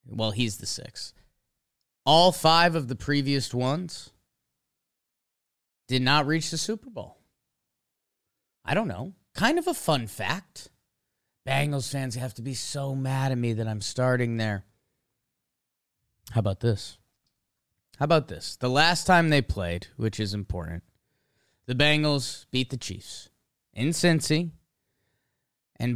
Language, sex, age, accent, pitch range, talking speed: English, male, 30-49, American, 110-155 Hz, 135 wpm